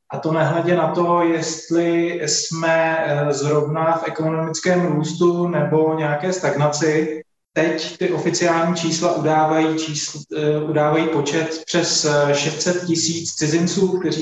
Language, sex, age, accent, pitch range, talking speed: Czech, male, 20-39, native, 150-165 Hz, 110 wpm